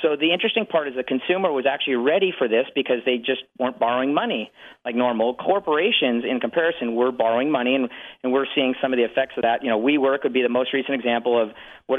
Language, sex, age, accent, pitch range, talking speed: English, male, 40-59, American, 125-170 Hz, 235 wpm